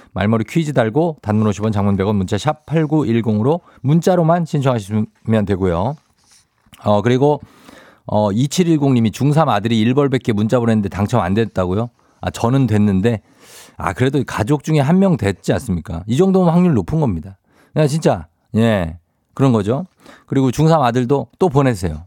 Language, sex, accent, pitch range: Korean, male, native, 105-145 Hz